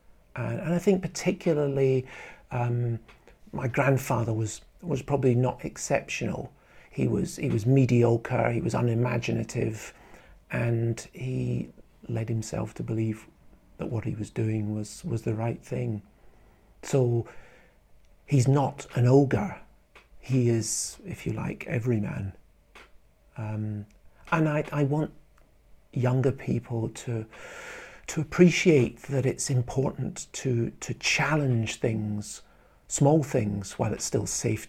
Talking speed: 125 wpm